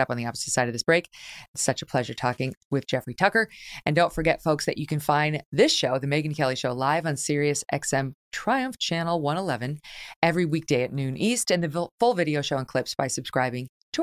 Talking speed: 220 wpm